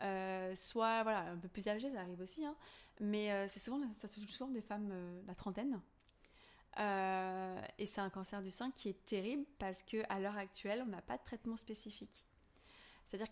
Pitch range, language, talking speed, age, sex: 190-220 Hz, French, 205 wpm, 20-39, female